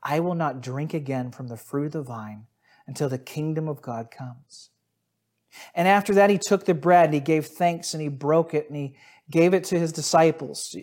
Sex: male